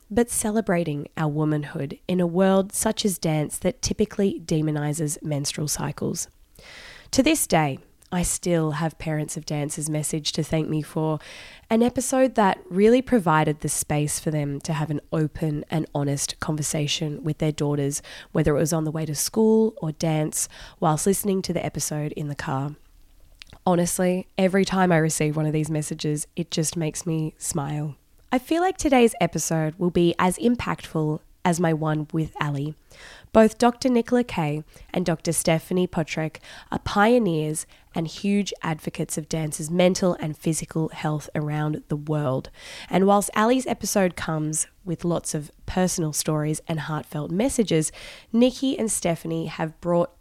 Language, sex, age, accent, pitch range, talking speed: English, female, 20-39, Australian, 150-185 Hz, 160 wpm